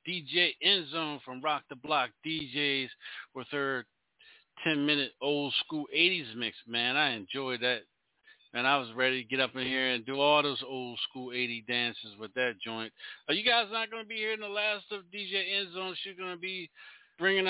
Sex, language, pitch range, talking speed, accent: male, English, 145-185 Hz, 190 wpm, American